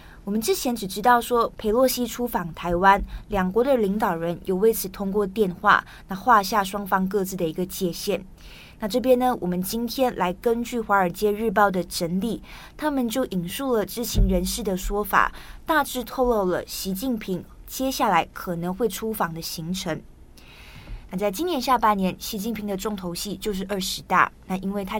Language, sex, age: Chinese, female, 20-39